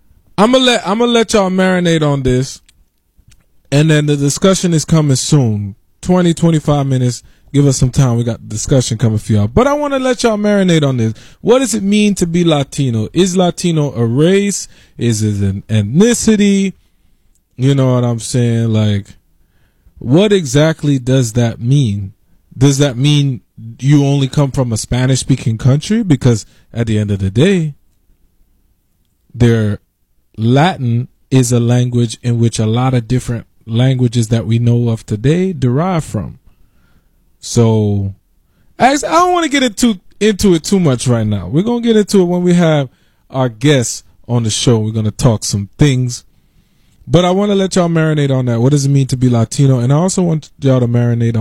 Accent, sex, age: American, male, 20-39